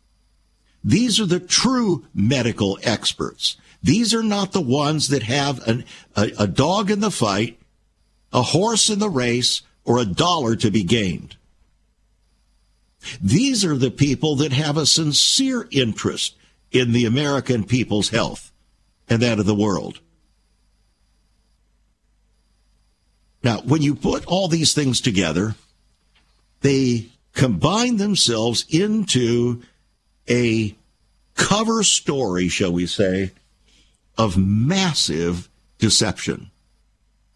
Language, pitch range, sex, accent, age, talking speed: English, 105-155 Hz, male, American, 50-69, 110 wpm